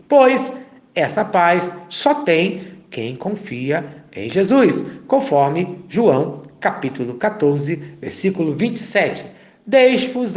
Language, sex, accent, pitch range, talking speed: Portuguese, male, Brazilian, 150-215 Hz, 95 wpm